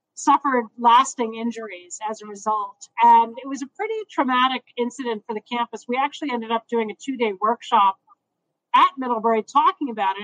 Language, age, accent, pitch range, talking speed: English, 40-59, American, 220-275 Hz, 170 wpm